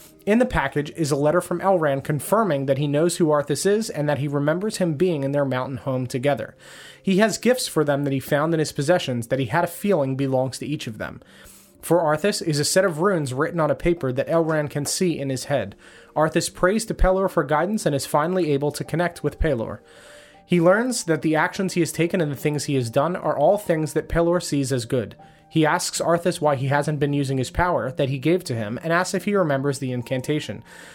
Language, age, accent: English, 30-49, American